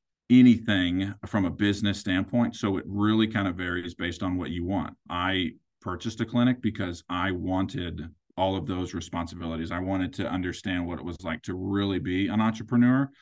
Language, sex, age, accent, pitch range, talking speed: English, male, 40-59, American, 90-105 Hz, 180 wpm